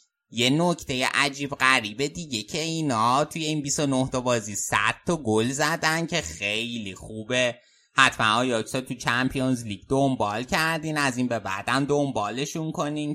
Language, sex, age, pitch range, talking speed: Persian, male, 20-39, 115-150 Hz, 140 wpm